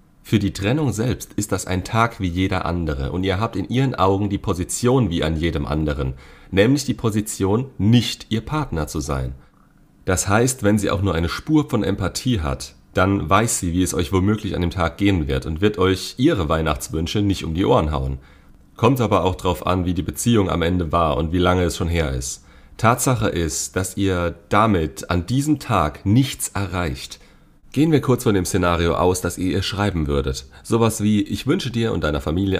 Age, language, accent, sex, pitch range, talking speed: 40-59, German, German, male, 80-105 Hz, 205 wpm